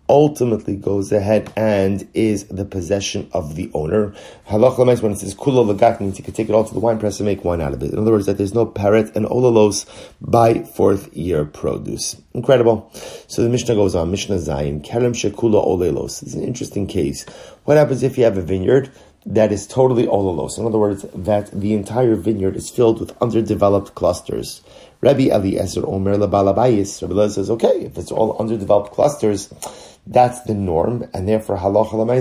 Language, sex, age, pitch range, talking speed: English, male, 30-49, 100-115 Hz, 185 wpm